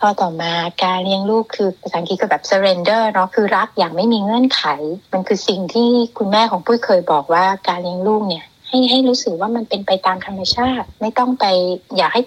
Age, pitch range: 60-79, 185-240 Hz